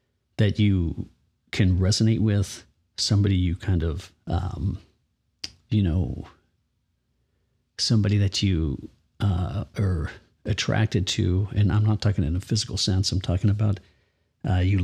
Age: 40-59